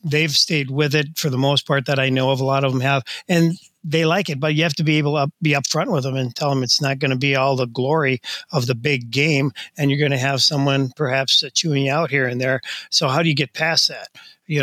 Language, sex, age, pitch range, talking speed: English, male, 40-59, 135-165 Hz, 280 wpm